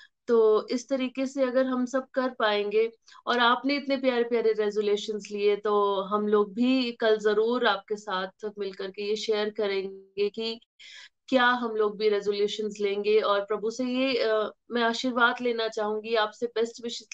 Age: 20-39